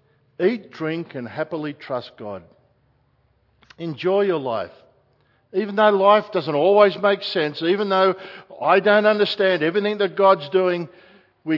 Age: 50-69